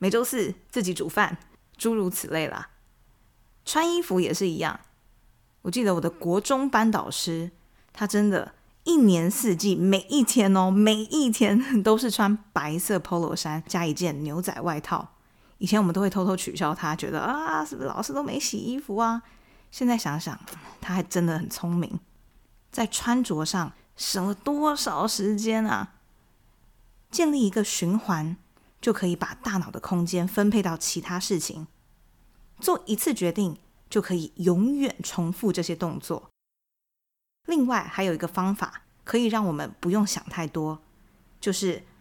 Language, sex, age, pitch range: Chinese, female, 20-39, 175-230 Hz